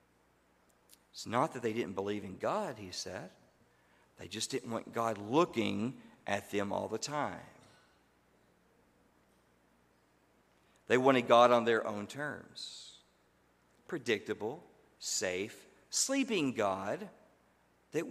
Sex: male